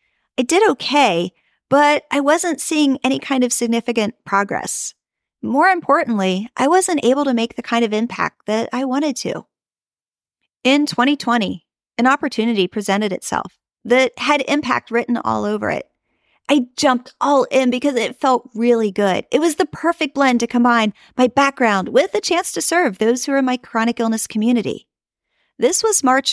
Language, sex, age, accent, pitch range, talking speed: English, female, 40-59, American, 225-290 Hz, 170 wpm